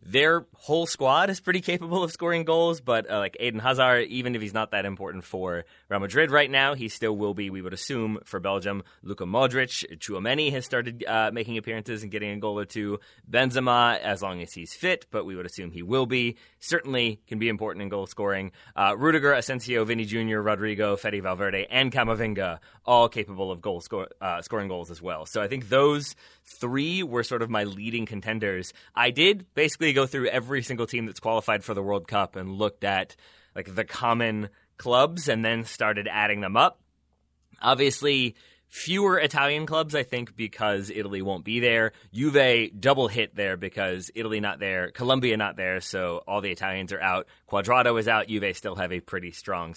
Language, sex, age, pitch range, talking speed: English, male, 20-39, 95-125 Hz, 200 wpm